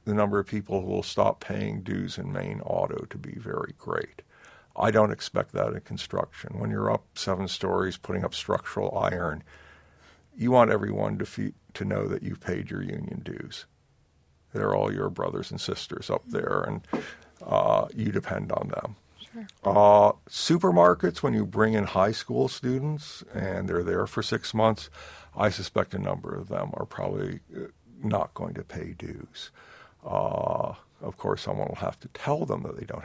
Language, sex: English, male